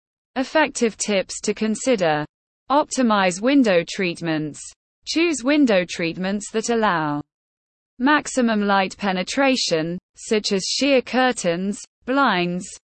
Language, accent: English, British